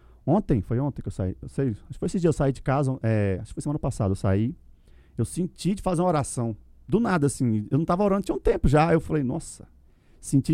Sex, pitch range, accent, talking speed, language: male, 125-180 Hz, Brazilian, 260 wpm, Portuguese